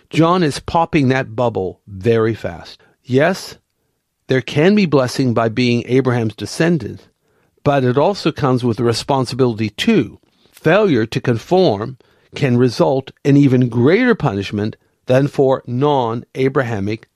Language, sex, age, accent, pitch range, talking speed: English, male, 50-69, American, 115-150 Hz, 120 wpm